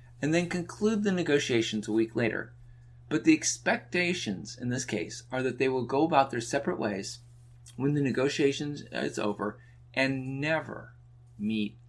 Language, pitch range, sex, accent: English, 120-140 Hz, male, American